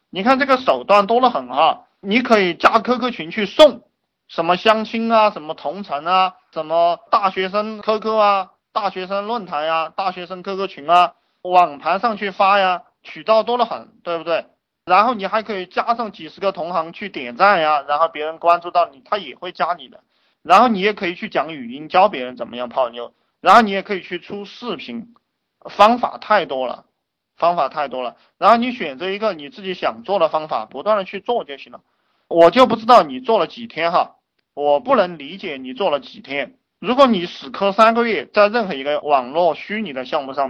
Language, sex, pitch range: Chinese, male, 165-225 Hz